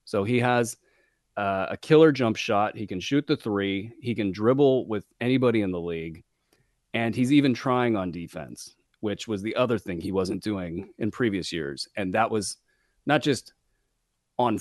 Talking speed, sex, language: 180 wpm, male, English